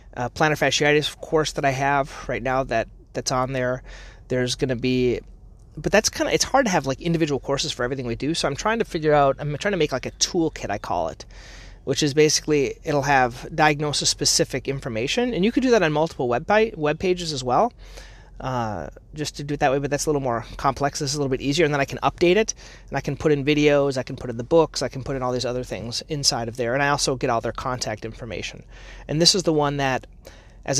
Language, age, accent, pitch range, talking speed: English, 30-49, American, 125-160 Hz, 255 wpm